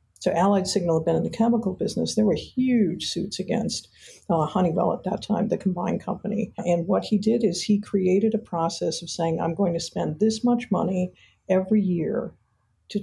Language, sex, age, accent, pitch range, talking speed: English, female, 50-69, American, 175-215 Hz, 200 wpm